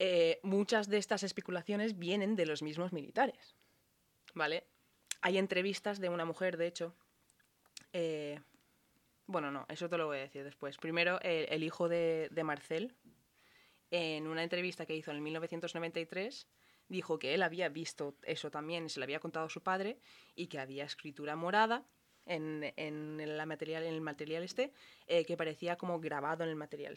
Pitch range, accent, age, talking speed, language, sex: 150-180 Hz, Spanish, 20-39, 170 wpm, Spanish, female